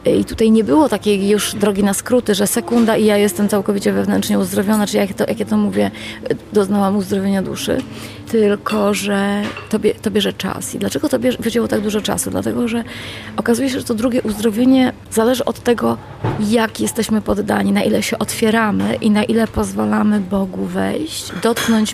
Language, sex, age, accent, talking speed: Polish, female, 30-49, native, 175 wpm